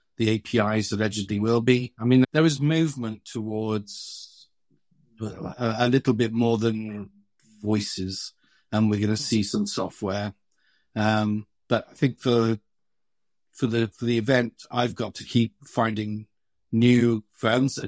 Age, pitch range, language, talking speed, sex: 50-69, 105-120 Hz, English, 145 wpm, male